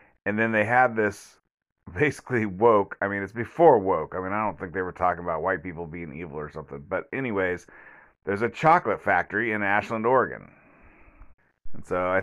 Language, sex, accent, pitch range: English, male, American, 95-120 Hz